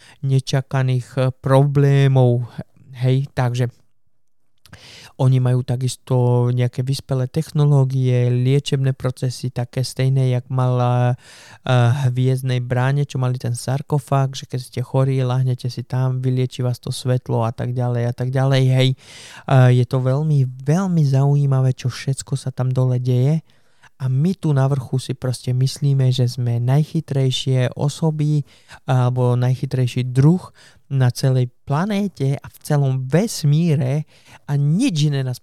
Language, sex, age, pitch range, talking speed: Slovak, male, 20-39, 125-140 Hz, 130 wpm